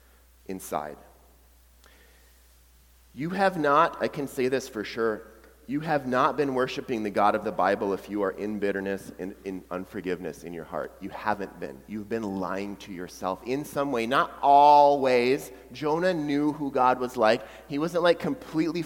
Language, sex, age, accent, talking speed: English, male, 30-49, American, 175 wpm